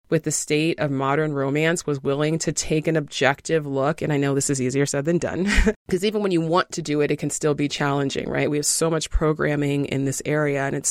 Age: 30-49